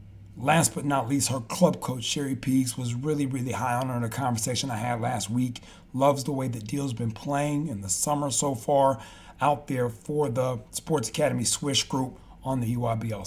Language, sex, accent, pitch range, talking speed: English, male, American, 115-150 Hz, 210 wpm